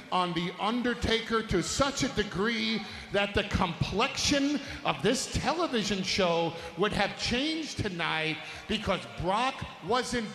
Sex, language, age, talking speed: male, English, 40-59, 120 wpm